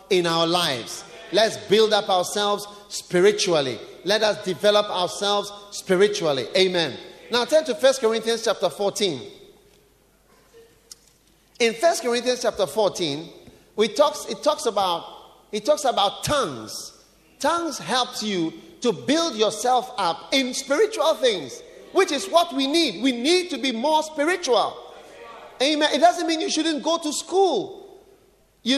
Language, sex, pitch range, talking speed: English, male, 220-330 Hz, 140 wpm